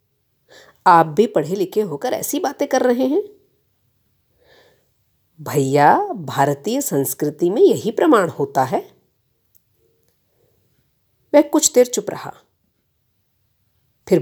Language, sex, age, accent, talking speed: Hindi, female, 50-69, native, 100 wpm